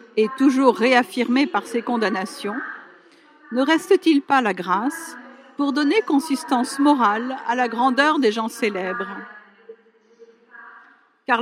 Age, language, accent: 50-69, Italian, French